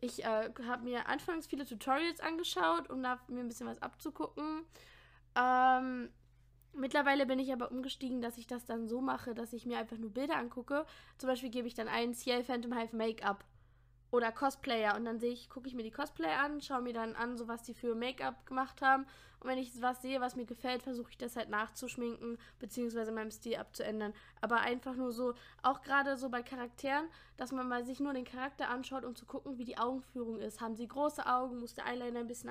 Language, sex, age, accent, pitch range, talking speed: German, female, 10-29, German, 230-260 Hz, 215 wpm